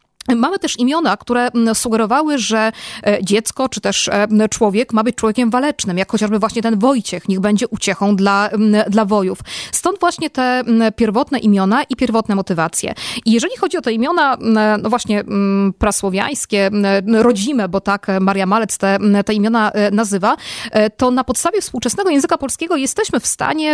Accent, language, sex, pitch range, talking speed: native, Polish, female, 205-260 Hz, 150 wpm